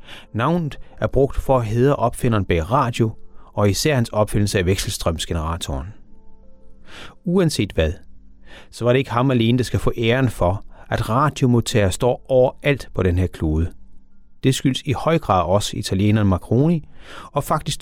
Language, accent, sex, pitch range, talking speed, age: Danish, native, male, 95-140 Hz, 155 wpm, 30-49